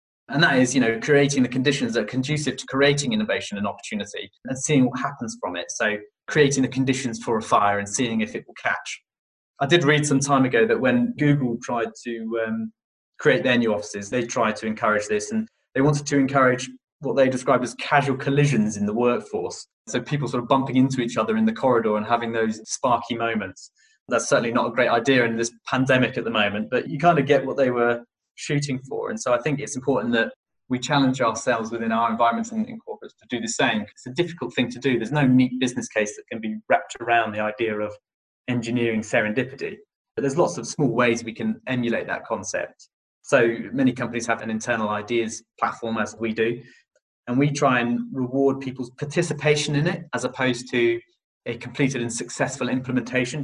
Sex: male